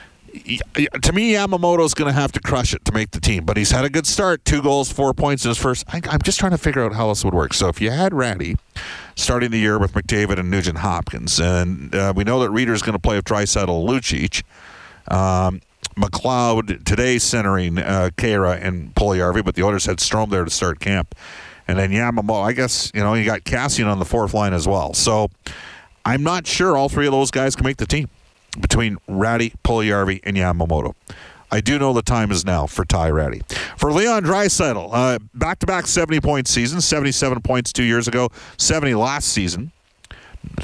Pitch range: 95-125 Hz